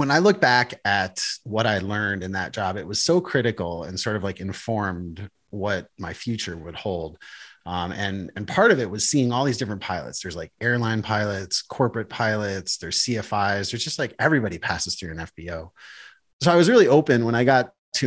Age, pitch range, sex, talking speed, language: 30-49, 95-125 Hz, male, 205 wpm, English